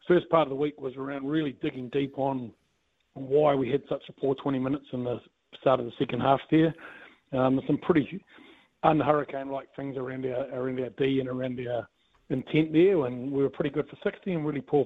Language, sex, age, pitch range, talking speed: English, male, 40-59, 130-145 Hz, 215 wpm